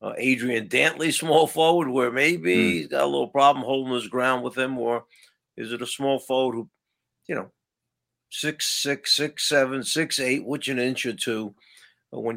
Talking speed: 170 wpm